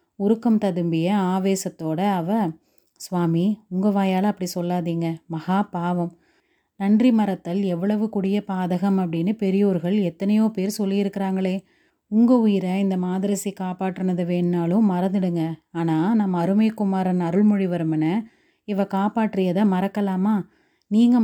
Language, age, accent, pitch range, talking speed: Tamil, 30-49, native, 175-200 Hz, 100 wpm